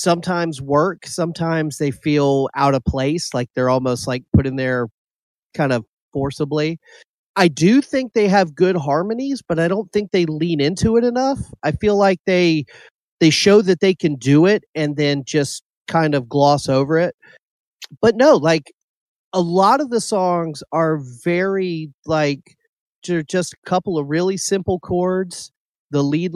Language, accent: English, American